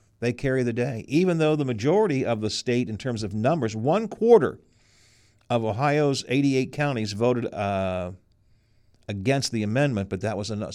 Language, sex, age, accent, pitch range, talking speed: English, male, 50-69, American, 105-140 Hz, 165 wpm